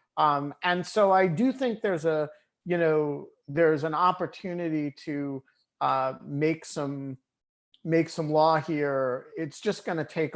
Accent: American